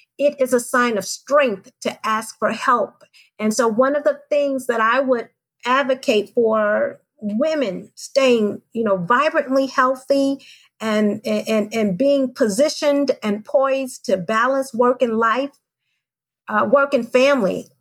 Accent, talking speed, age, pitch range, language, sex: American, 145 wpm, 40-59, 220-280 Hz, English, female